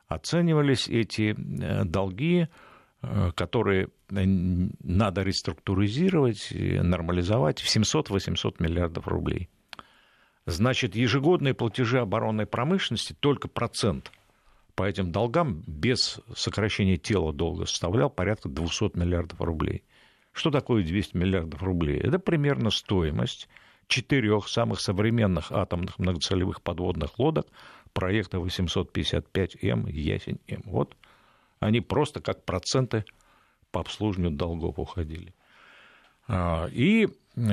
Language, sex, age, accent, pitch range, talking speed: Russian, male, 60-79, native, 90-115 Hz, 95 wpm